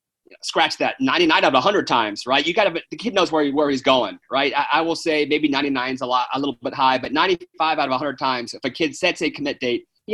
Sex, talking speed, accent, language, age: male, 265 wpm, American, English, 30-49